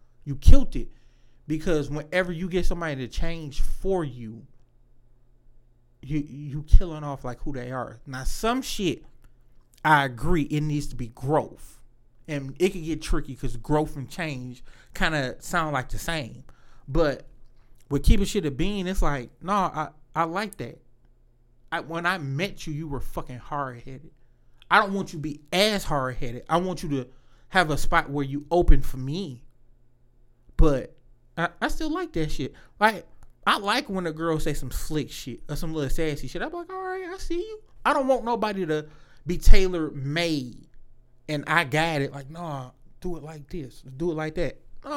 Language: English